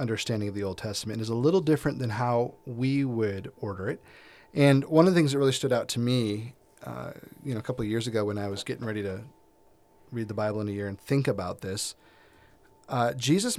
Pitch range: 105-130 Hz